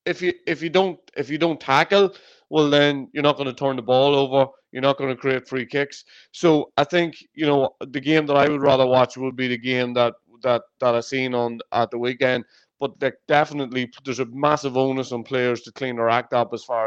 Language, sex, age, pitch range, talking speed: English, male, 30-49, 125-150 Hz, 240 wpm